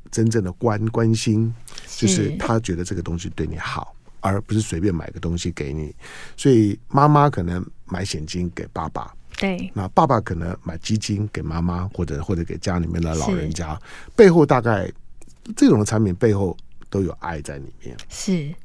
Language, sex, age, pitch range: Chinese, male, 50-69, 90-125 Hz